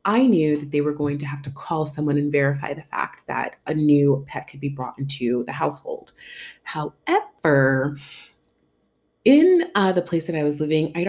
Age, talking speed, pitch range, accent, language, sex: 30-49, 190 wpm, 140-180 Hz, American, English, female